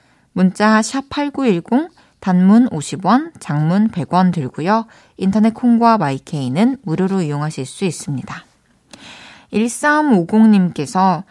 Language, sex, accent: Korean, female, native